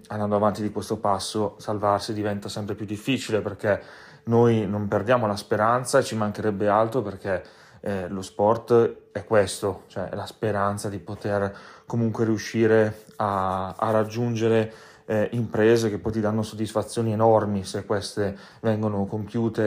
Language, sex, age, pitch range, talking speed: Italian, male, 30-49, 105-115 Hz, 145 wpm